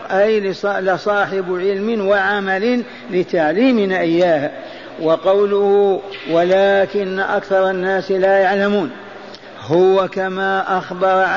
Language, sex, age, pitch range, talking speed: Arabic, male, 50-69, 190-200 Hz, 80 wpm